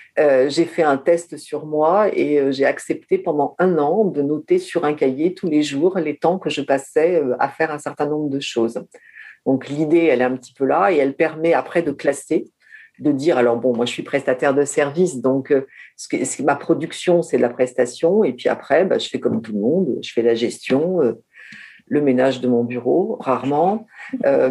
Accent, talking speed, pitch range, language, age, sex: French, 230 wpm, 130-165 Hz, French, 50-69, female